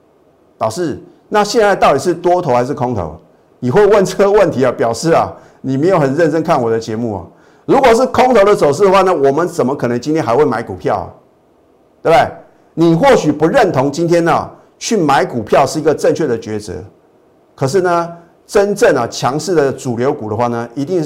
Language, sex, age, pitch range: Chinese, male, 50-69, 125-175 Hz